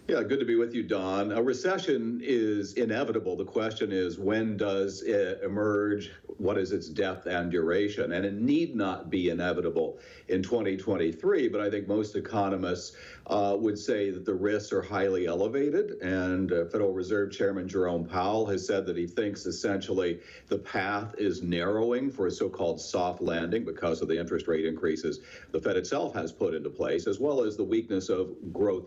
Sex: male